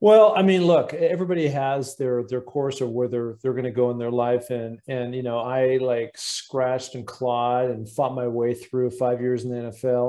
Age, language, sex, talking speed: 40-59, English, male, 220 wpm